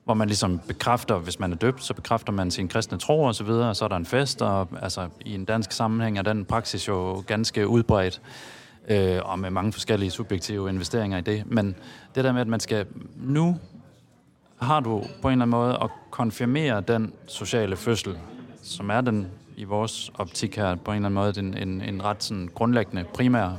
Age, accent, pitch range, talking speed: 30-49, native, 100-120 Hz, 210 wpm